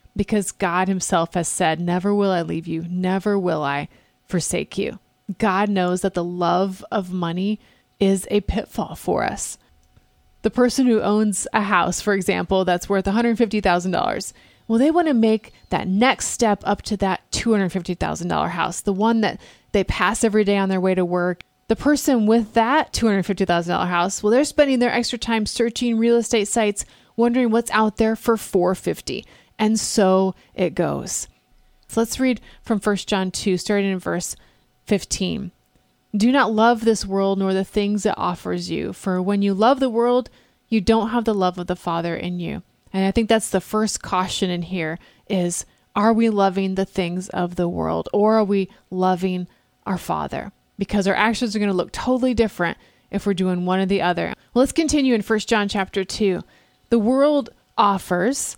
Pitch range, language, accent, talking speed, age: 185-225 Hz, English, American, 185 wpm, 30-49